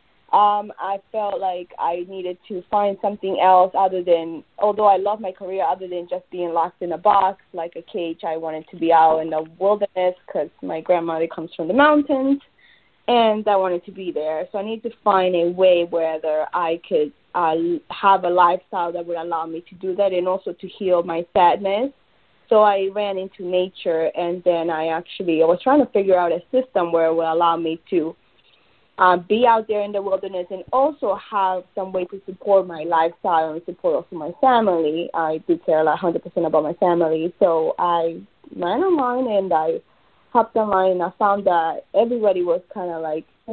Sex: female